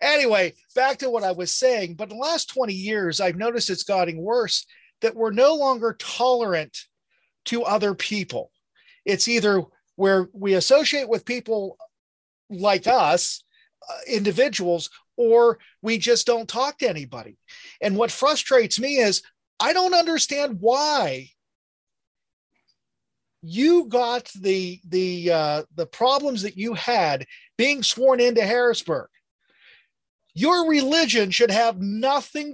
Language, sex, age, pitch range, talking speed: English, male, 40-59, 190-250 Hz, 130 wpm